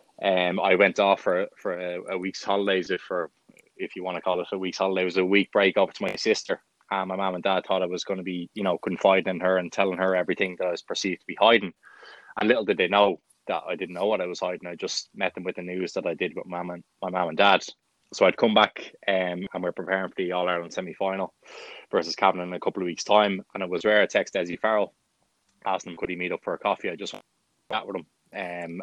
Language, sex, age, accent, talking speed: English, male, 20-39, Irish, 270 wpm